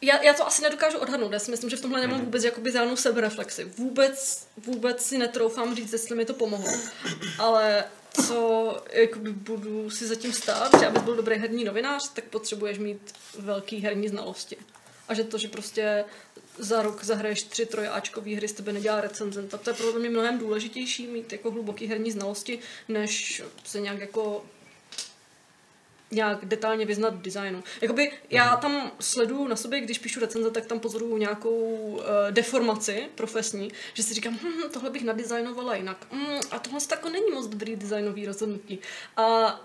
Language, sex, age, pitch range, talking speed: Czech, female, 20-39, 215-250 Hz, 170 wpm